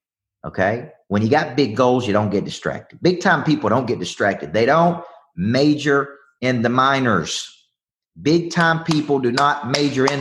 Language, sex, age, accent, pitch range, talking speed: English, male, 40-59, American, 105-150 Hz, 170 wpm